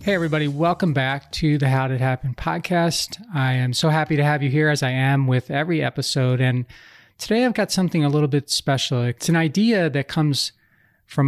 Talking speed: 215 wpm